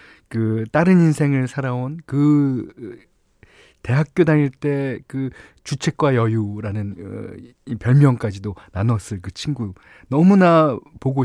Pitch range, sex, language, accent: 100-145 Hz, male, Korean, native